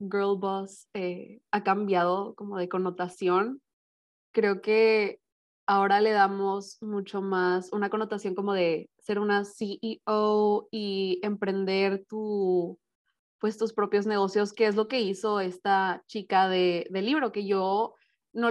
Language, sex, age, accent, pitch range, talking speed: Spanish, female, 20-39, Mexican, 195-220 Hz, 135 wpm